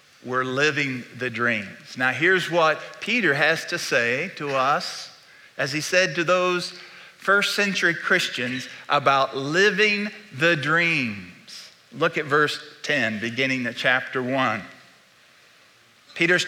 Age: 50-69